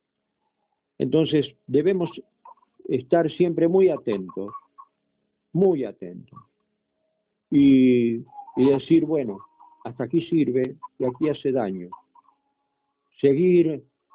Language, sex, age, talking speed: Spanish, male, 50-69, 85 wpm